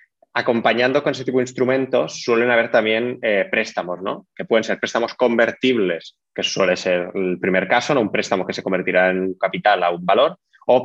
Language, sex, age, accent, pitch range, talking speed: Spanish, male, 20-39, Spanish, 95-120 Hz, 195 wpm